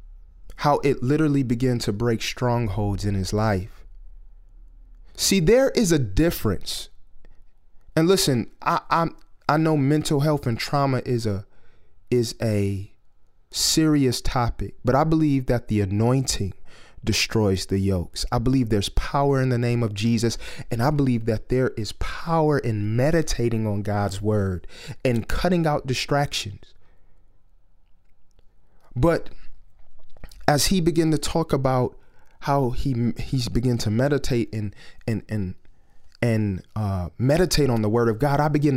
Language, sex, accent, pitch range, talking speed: English, male, American, 100-140 Hz, 140 wpm